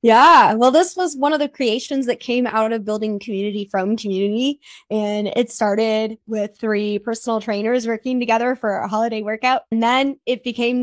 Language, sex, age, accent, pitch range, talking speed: English, female, 20-39, American, 220-265 Hz, 185 wpm